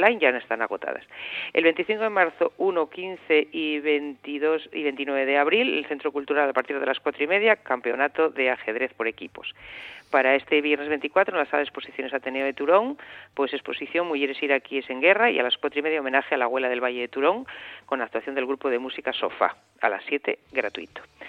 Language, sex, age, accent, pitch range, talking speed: Spanish, female, 40-59, Spanish, 135-165 Hz, 215 wpm